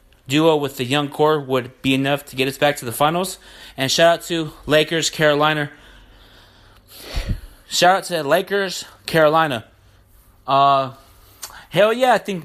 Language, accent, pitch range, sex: English, American, 120-170 Hz, male